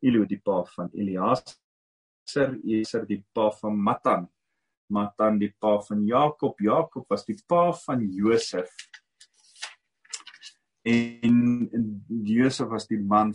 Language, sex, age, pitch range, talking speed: English, male, 40-59, 105-150 Hz, 120 wpm